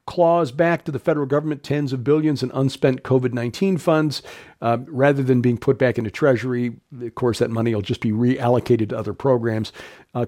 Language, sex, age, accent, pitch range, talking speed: English, male, 50-69, American, 120-150 Hz, 195 wpm